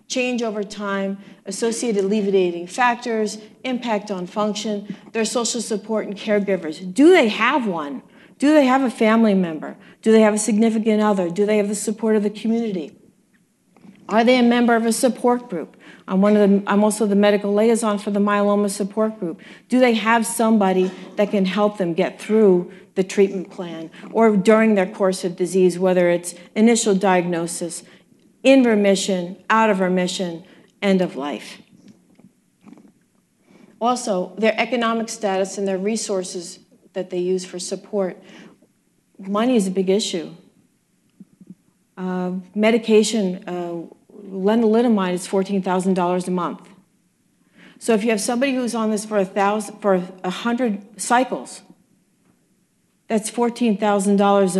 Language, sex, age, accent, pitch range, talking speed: English, female, 40-59, American, 190-220 Hz, 145 wpm